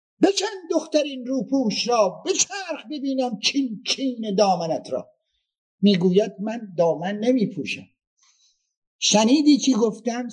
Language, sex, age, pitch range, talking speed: Persian, male, 50-69, 205-275 Hz, 115 wpm